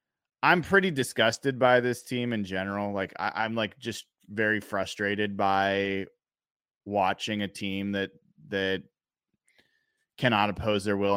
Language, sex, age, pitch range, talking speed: English, male, 20-39, 100-130 Hz, 130 wpm